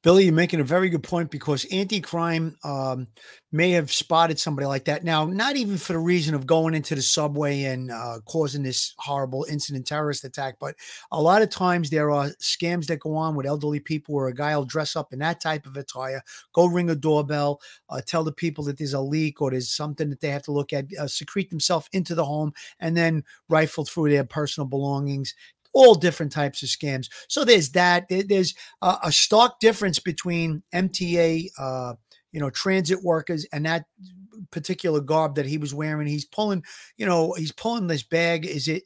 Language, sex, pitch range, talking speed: English, male, 145-175 Hz, 200 wpm